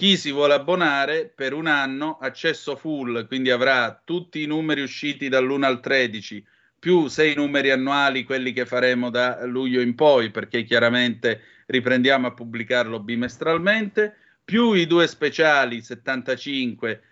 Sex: male